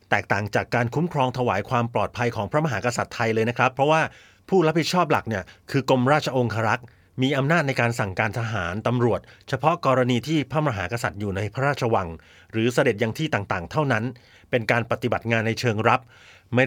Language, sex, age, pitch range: Thai, male, 30-49, 105-130 Hz